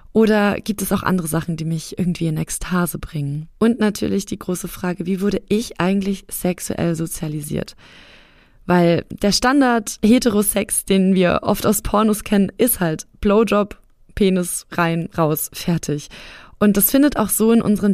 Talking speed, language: 155 wpm, German